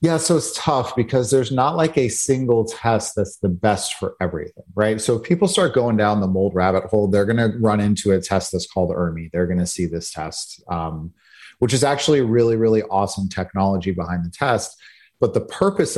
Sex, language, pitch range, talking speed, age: male, English, 90-115 Hz, 215 wpm, 30-49